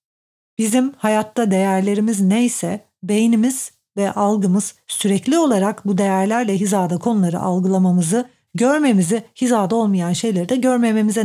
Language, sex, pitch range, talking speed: Turkish, female, 195-235 Hz, 105 wpm